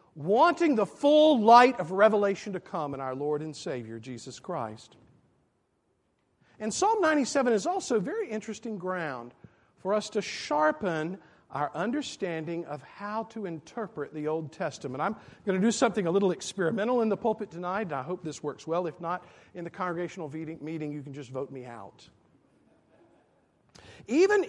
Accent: American